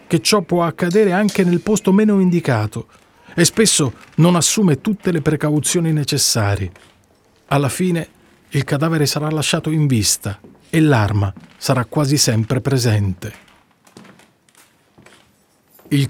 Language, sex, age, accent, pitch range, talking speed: Italian, male, 40-59, native, 125-170 Hz, 120 wpm